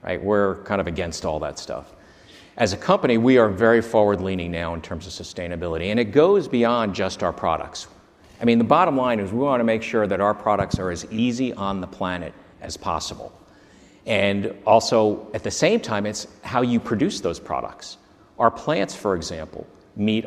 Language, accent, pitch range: English, American, 95-110 Hz